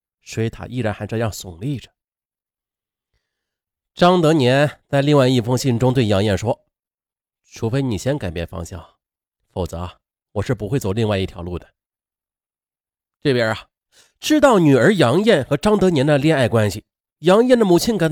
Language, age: Chinese, 30-49